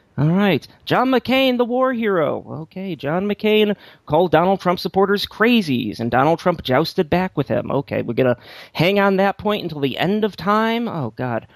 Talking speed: 190 wpm